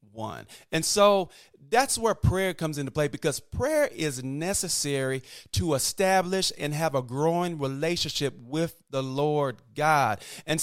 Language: English